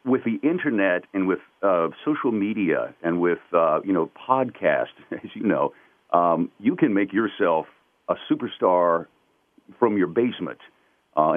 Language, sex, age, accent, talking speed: English, male, 50-69, American, 150 wpm